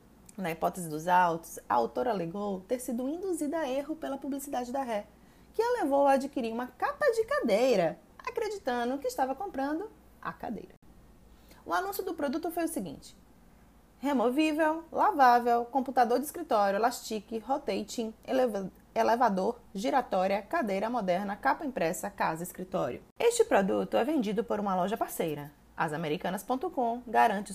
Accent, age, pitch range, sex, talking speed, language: Brazilian, 20-39, 195-280 Hz, female, 135 wpm, Portuguese